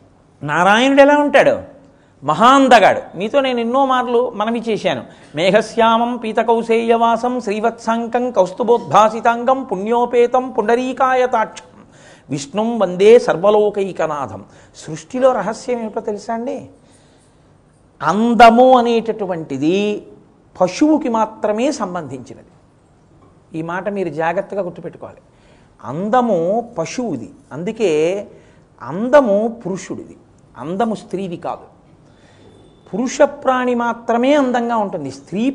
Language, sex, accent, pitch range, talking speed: Telugu, male, native, 180-250 Hz, 85 wpm